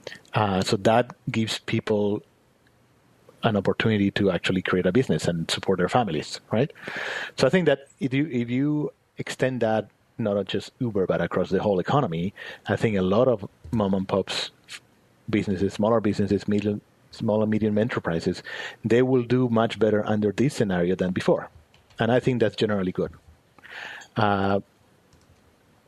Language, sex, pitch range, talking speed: English, male, 100-125 Hz, 160 wpm